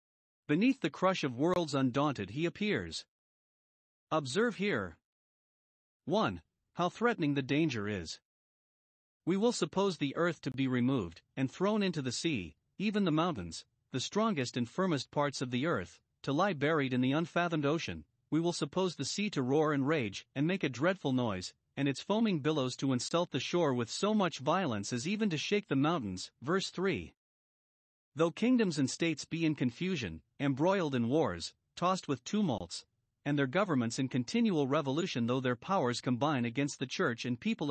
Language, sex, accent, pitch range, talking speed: English, male, American, 130-180 Hz, 175 wpm